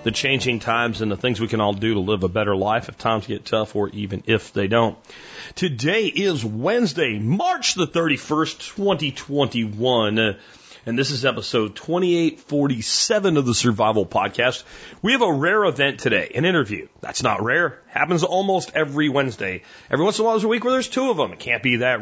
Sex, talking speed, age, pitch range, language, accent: male, 195 wpm, 30-49, 115-155 Hz, English, American